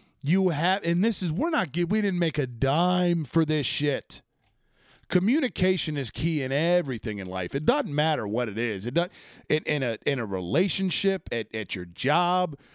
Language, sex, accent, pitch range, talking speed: English, male, American, 120-175 Hz, 170 wpm